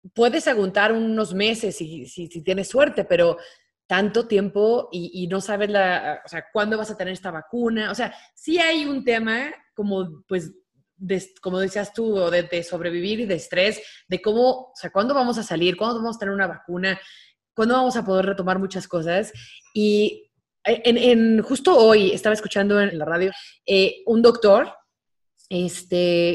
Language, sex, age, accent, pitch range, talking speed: Spanish, female, 20-39, Mexican, 180-225 Hz, 180 wpm